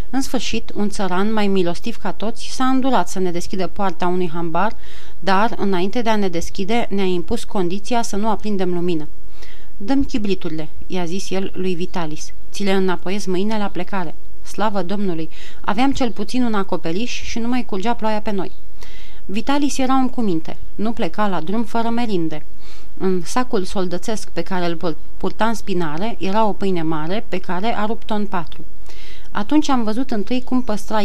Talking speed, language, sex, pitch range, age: 180 wpm, Romanian, female, 180-225 Hz, 30-49